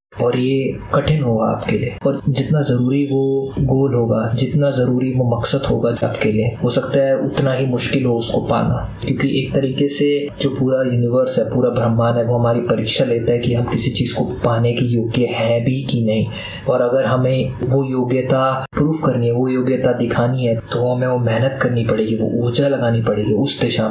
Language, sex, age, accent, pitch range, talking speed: Hindi, male, 20-39, native, 120-135 Hz, 200 wpm